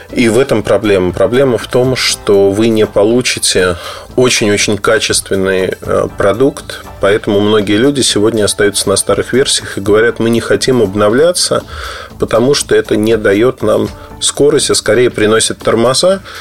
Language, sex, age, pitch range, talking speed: Russian, male, 20-39, 100-130 Hz, 145 wpm